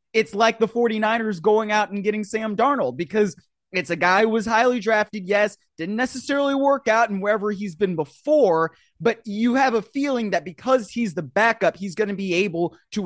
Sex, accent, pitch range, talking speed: male, American, 175-235 Hz, 200 wpm